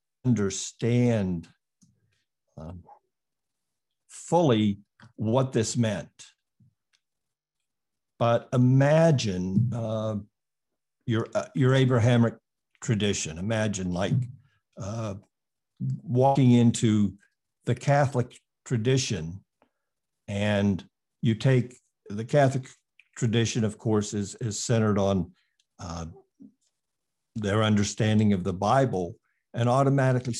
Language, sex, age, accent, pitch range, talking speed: English, male, 60-79, American, 100-125 Hz, 85 wpm